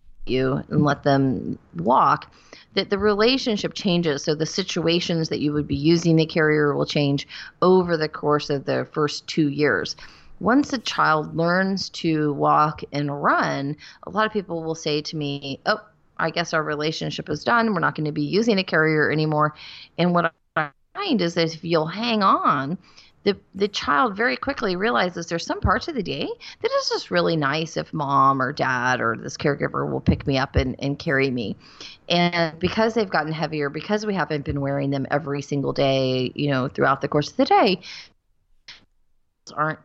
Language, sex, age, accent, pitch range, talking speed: English, female, 30-49, American, 145-185 Hz, 190 wpm